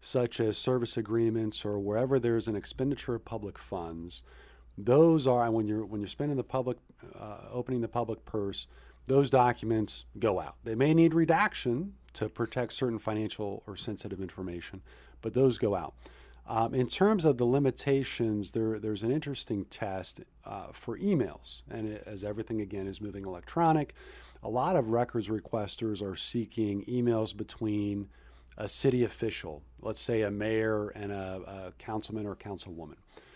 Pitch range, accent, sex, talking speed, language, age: 105-125 Hz, American, male, 160 wpm, English, 40-59